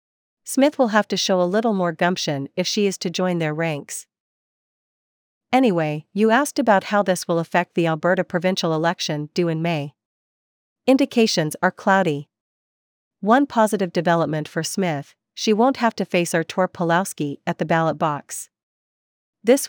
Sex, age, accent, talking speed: female, 40-59, American, 155 wpm